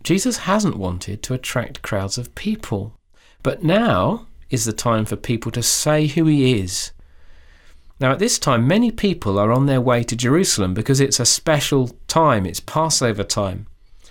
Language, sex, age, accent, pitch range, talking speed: English, male, 40-59, British, 90-145 Hz, 170 wpm